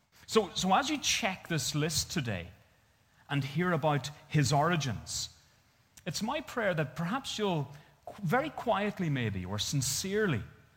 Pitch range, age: 110-150 Hz, 30-49